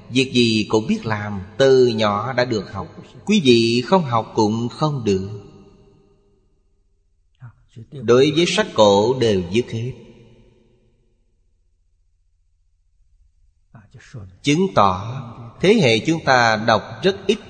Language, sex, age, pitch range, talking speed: Vietnamese, male, 30-49, 100-135 Hz, 115 wpm